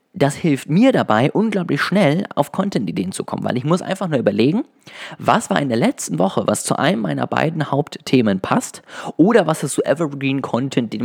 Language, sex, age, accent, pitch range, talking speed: German, male, 20-39, German, 110-145 Hz, 190 wpm